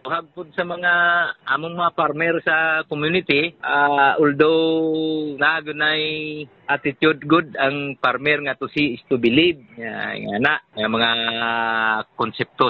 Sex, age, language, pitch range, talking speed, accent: male, 50-69, Filipino, 130-160 Hz, 130 wpm, native